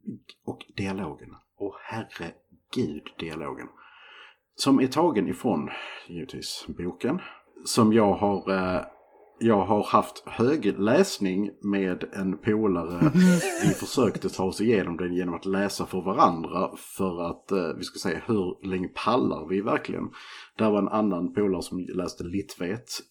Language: Swedish